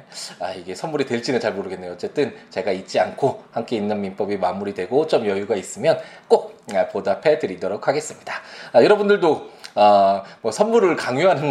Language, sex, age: Korean, male, 20-39